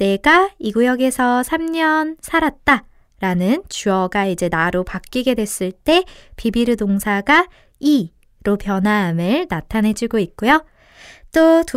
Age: 20-39